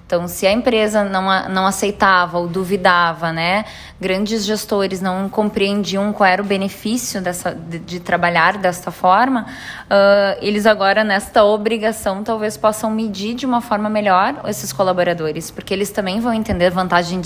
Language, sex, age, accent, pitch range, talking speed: Portuguese, female, 20-39, Brazilian, 175-215 Hz, 155 wpm